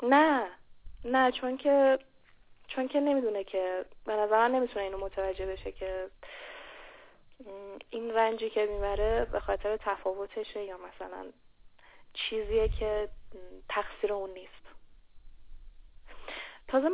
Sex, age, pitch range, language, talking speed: female, 10-29, 195-260 Hz, Persian, 105 wpm